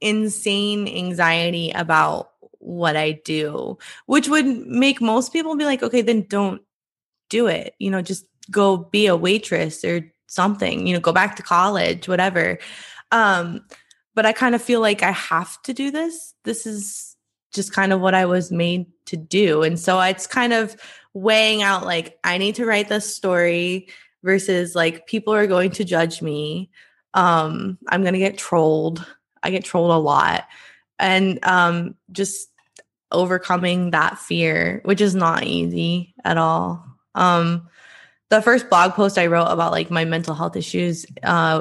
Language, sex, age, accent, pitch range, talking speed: English, female, 20-39, American, 170-210 Hz, 165 wpm